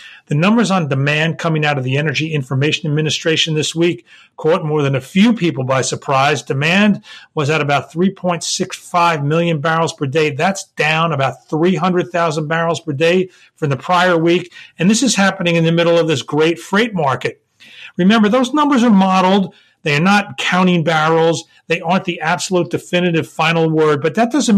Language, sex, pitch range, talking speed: English, male, 150-185 Hz, 180 wpm